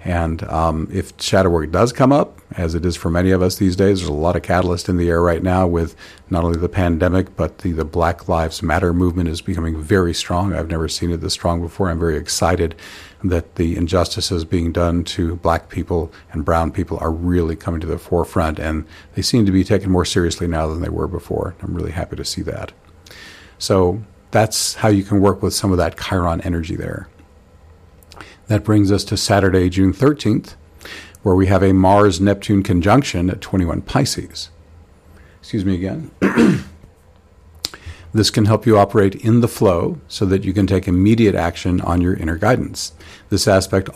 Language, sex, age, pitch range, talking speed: English, male, 50-69, 85-100 Hz, 195 wpm